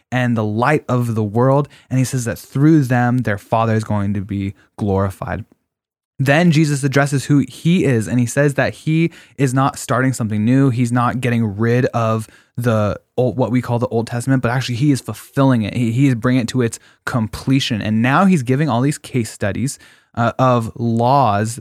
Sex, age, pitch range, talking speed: male, 20-39, 110-130 Hz, 205 wpm